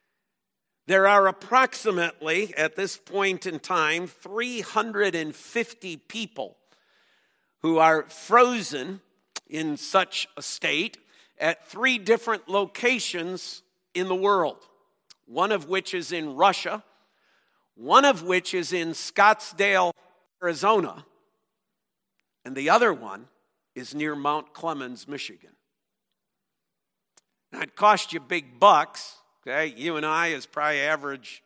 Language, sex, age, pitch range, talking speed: English, male, 50-69, 165-220 Hz, 110 wpm